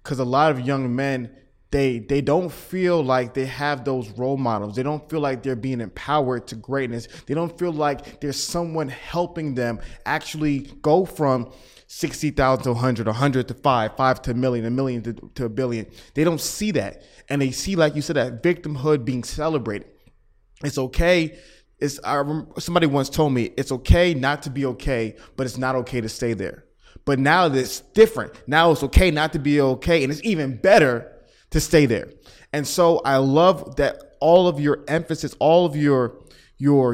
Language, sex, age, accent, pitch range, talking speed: English, male, 20-39, American, 125-155 Hz, 190 wpm